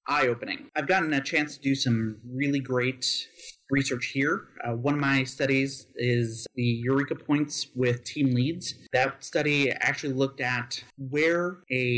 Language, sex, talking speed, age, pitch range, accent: English, male, 155 wpm, 30-49, 125-145 Hz, American